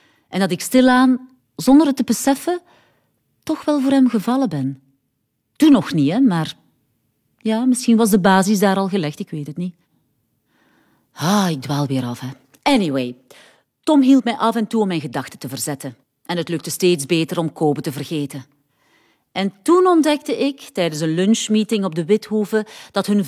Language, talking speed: Dutch, 180 wpm